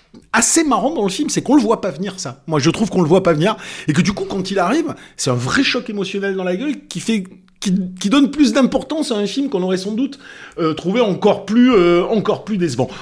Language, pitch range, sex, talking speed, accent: French, 135-200 Hz, male, 265 wpm, French